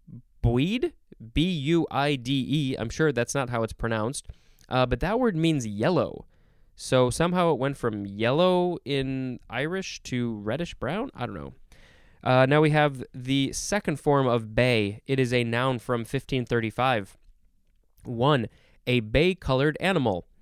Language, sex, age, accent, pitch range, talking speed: English, male, 20-39, American, 115-155 Hz, 140 wpm